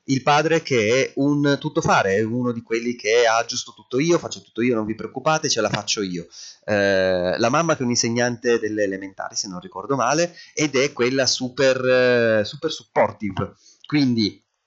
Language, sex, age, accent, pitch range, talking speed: Italian, male, 30-49, native, 105-150 Hz, 190 wpm